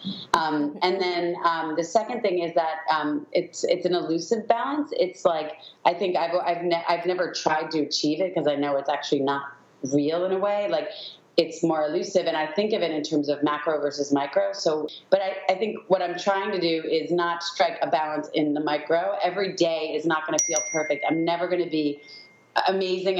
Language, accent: English, American